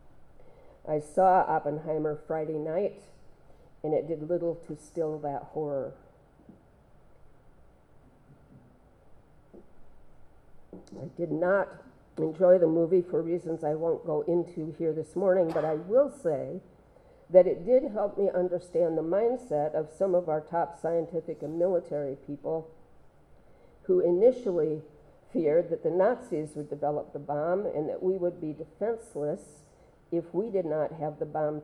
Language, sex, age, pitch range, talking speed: English, female, 50-69, 155-180 Hz, 135 wpm